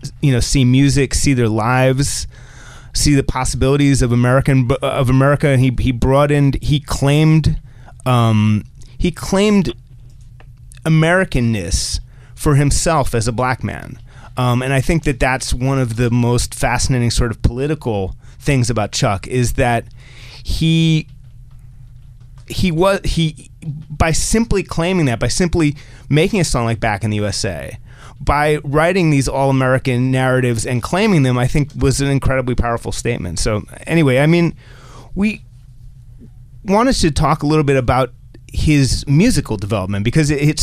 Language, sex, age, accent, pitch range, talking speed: English, male, 30-49, American, 120-145 Hz, 150 wpm